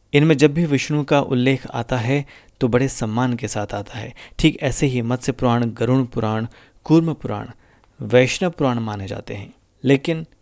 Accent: native